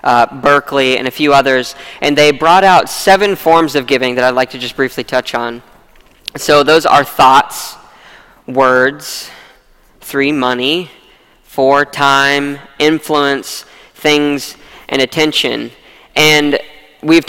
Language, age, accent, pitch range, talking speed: English, 10-29, American, 135-155 Hz, 130 wpm